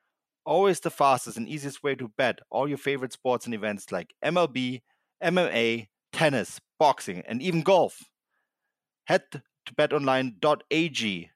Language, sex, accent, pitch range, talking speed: English, male, German, 100-140 Hz, 130 wpm